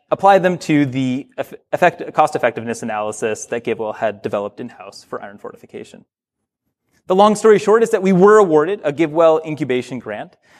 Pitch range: 140-205 Hz